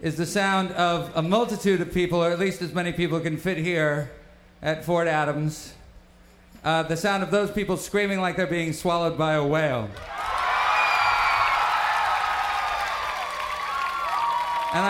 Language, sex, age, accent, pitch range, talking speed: English, male, 40-59, American, 155-210 Hz, 140 wpm